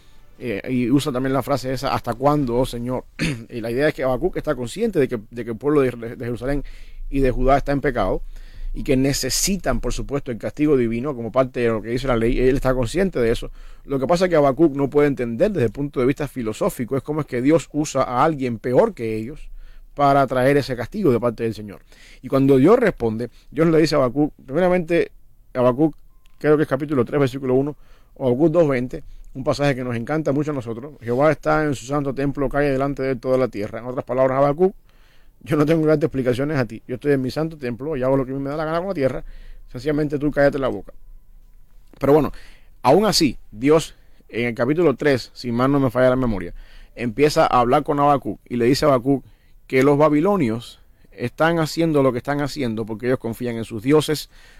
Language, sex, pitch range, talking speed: English, male, 120-145 Hz, 225 wpm